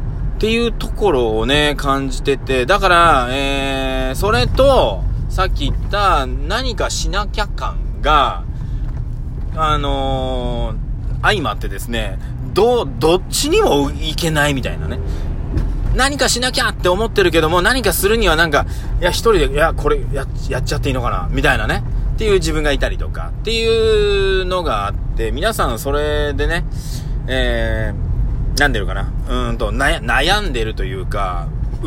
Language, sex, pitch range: Japanese, male, 115-145 Hz